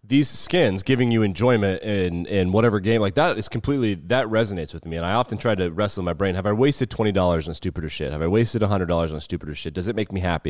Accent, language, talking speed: American, English, 275 wpm